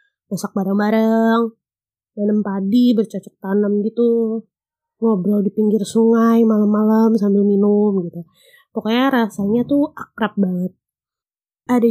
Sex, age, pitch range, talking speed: female, 20-39, 205-240 Hz, 105 wpm